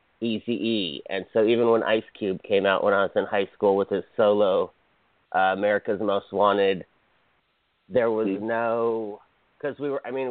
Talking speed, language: 175 wpm, English